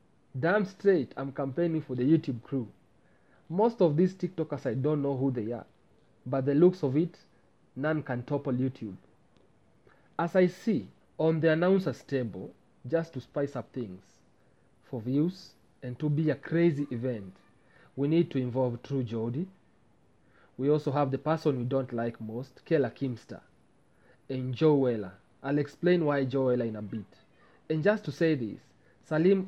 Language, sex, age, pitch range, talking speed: English, male, 40-59, 125-165 Hz, 165 wpm